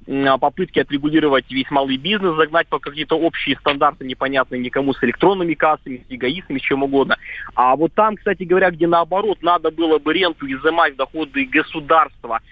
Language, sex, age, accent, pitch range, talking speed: Russian, male, 20-39, native, 140-170 Hz, 165 wpm